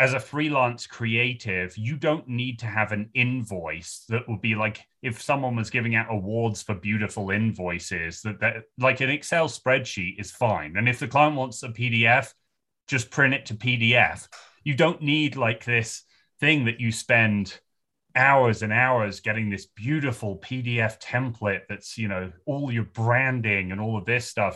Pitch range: 105-130 Hz